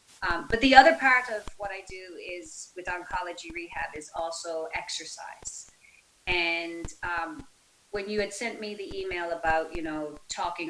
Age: 30-49